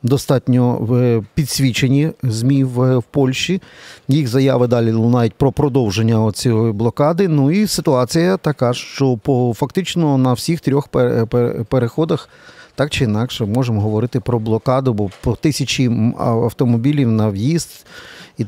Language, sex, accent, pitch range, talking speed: Ukrainian, male, native, 120-145 Hz, 125 wpm